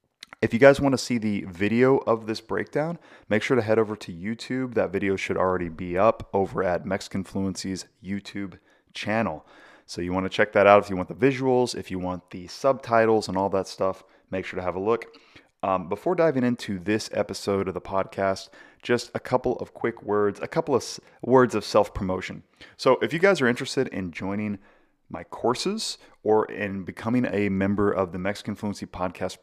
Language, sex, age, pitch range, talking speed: English, male, 30-49, 95-120 Hz, 200 wpm